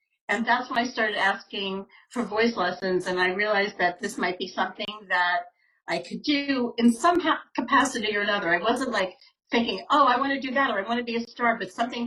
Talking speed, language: 225 wpm, English